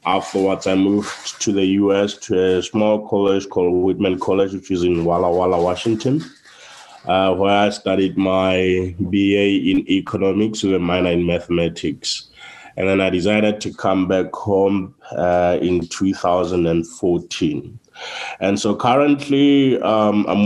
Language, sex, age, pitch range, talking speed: English, male, 20-39, 90-105 Hz, 140 wpm